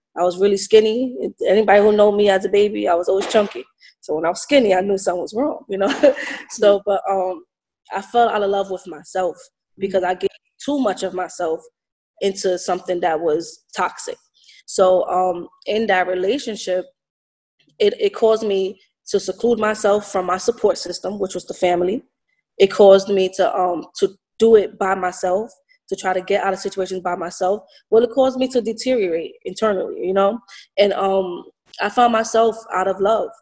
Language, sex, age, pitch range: English, female, 20-39, 185-225 Hz